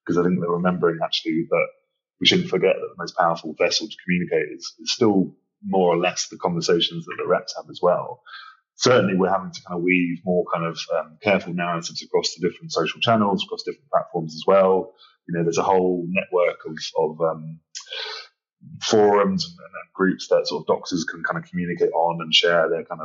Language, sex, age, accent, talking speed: English, male, 30-49, British, 205 wpm